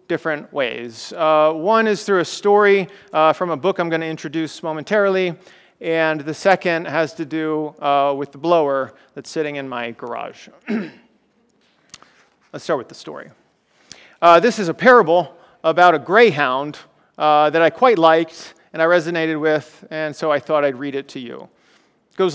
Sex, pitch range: male, 150-190 Hz